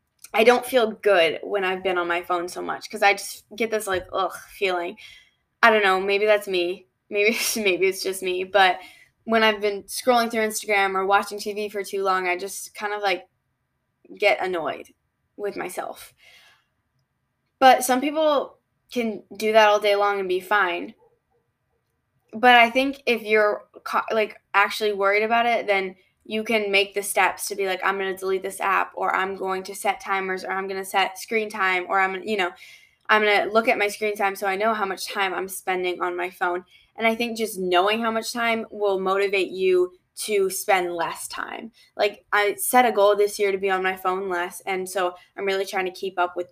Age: 10-29